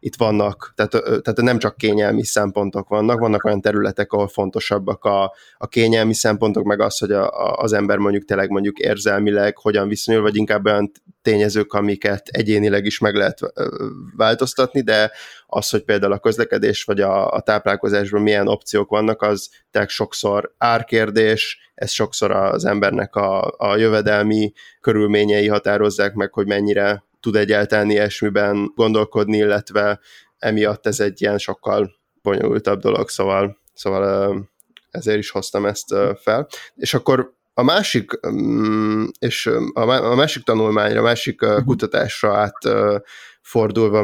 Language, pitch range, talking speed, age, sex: Hungarian, 100-110 Hz, 135 wpm, 20-39, male